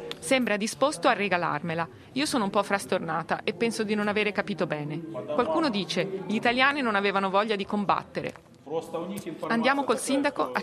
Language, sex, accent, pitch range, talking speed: Italian, female, native, 180-220 Hz, 165 wpm